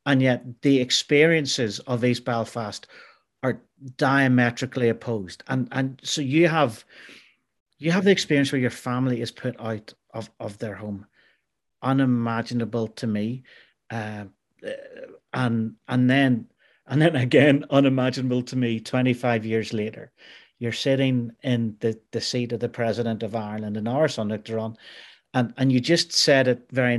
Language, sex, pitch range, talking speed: English, male, 115-140 Hz, 150 wpm